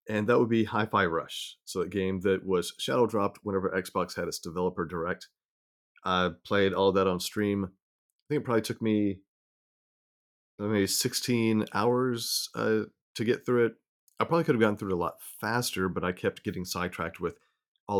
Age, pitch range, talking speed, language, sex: 30-49, 90-105 Hz, 185 wpm, English, male